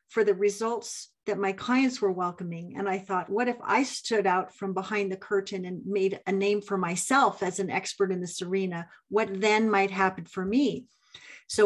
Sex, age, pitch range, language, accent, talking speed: female, 50-69, 190-215 Hz, English, American, 200 wpm